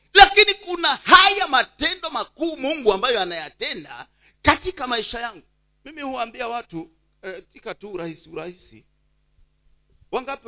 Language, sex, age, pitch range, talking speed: Swahili, male, 50-69, 195-330 Hz, 105 wpm